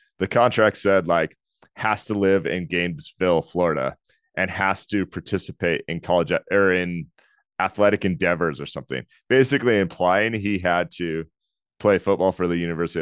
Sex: male